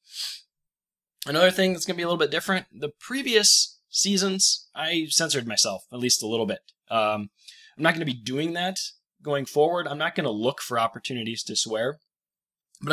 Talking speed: 190 wpm